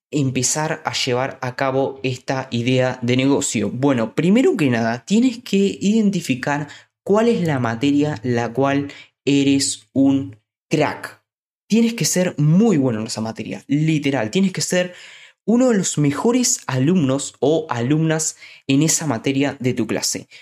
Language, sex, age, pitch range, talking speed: Spanish, male, 20-39, 125-160 Hz, 145 wpm